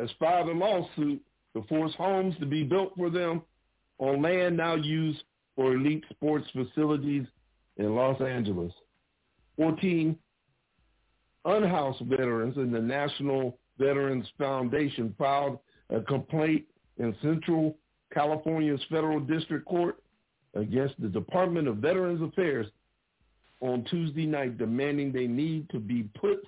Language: English